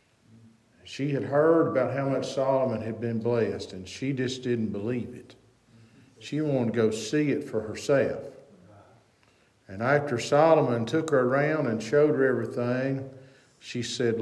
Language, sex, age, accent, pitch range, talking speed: English, male, 50-69, American, 115-155 Hz, 150 wpm